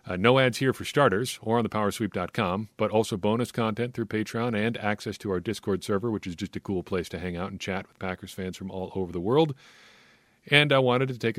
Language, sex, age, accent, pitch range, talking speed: English, male, 40-59, American, 95-115 Hz, 240 wpm